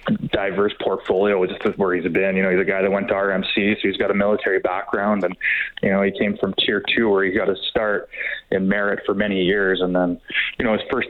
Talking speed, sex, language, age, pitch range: 250 wpm, male, English, 20-39, 95-105 Hz